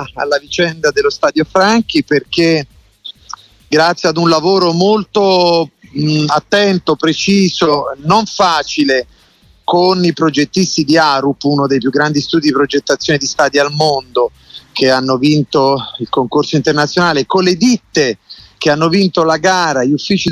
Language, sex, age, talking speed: Italian, male, 30-49, 140 wpm